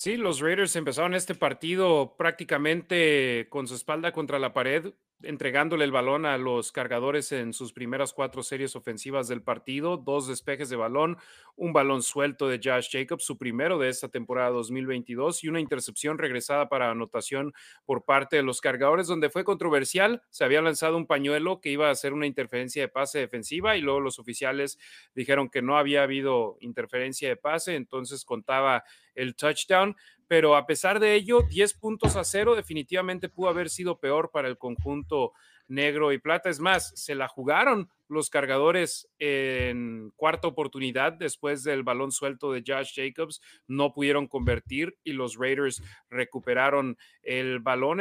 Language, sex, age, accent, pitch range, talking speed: Spanish, male, 30-49, Mexican, 130-175 Hz, 165 wpm